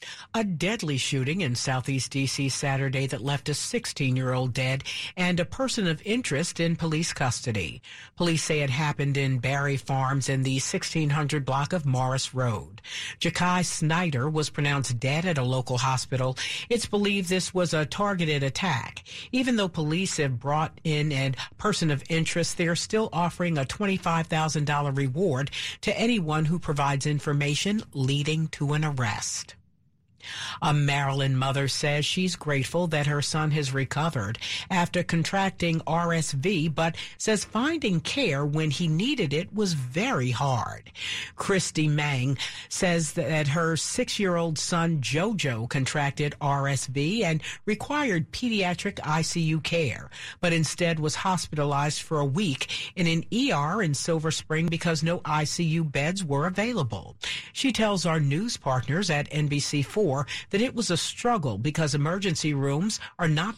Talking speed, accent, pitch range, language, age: 145 wpm, American, 140-175 Hz, English, 50-69